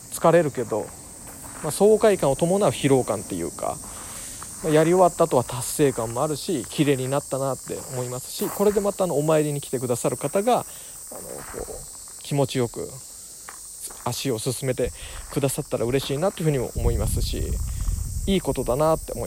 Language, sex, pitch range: Japanese, male, 120-160 Hz